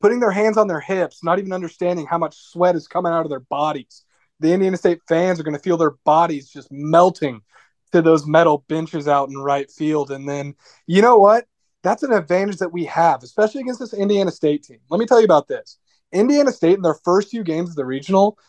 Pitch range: 145-195 Hz